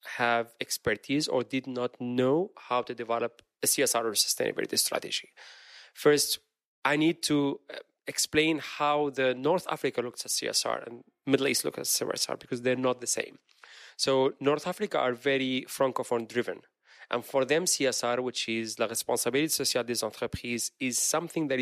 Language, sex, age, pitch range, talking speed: English, male, 30-49, 125-150 Hz, 160 wpm